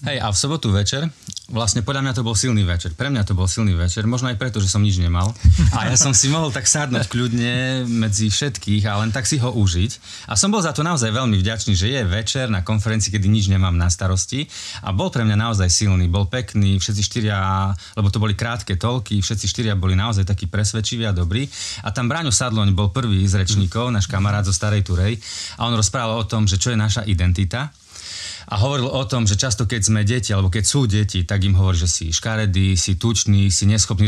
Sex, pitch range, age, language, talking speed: male, 95-120 Hz, 30-49, Slovak, 225 wpm